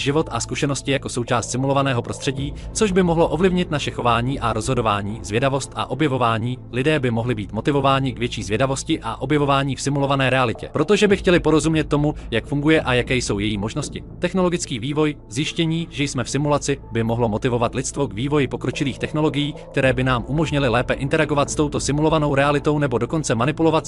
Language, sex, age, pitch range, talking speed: Czech, male, 30-49, 120-155 Hz, 180 wpm